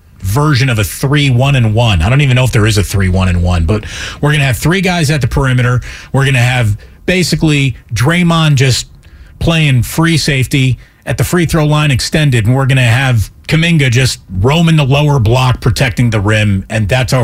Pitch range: 100-145 Hz